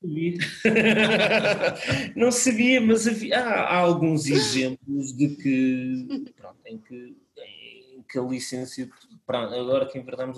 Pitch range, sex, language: 130-155 Hz, male, Portuguese